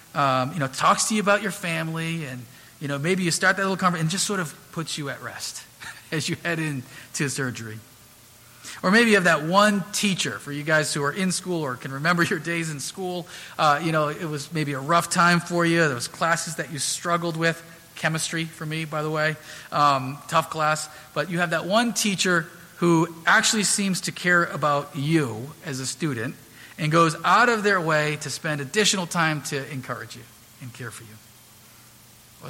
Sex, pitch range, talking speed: male, 130-170 Hz, 210 wpm